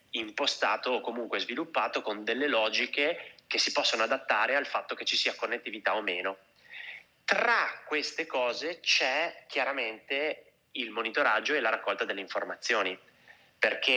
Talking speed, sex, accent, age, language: 140 wpm, male, native, 30-49, Italian